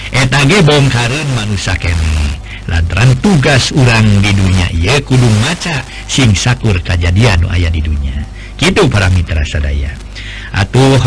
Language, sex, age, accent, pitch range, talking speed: Indonesian, male, 50-69, native, 100-135 Hz, 125 wpm